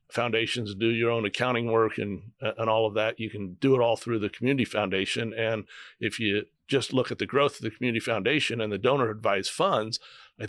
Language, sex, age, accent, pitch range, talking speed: English, male, 60-79, American, 105-125 Hz, 215 wpm